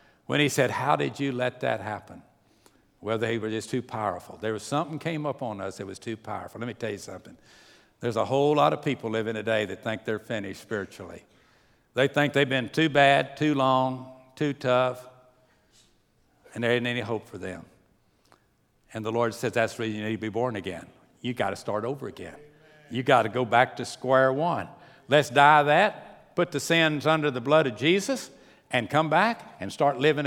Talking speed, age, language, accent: 210 wpm, 60-79, English, American